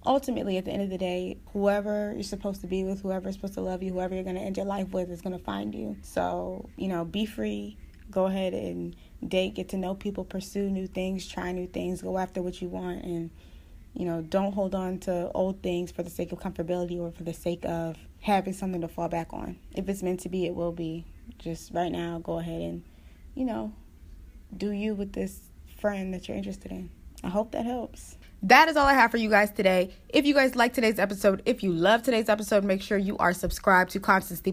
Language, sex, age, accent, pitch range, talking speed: English, female, 20-39, American, 175-205 Hz, 235 wpm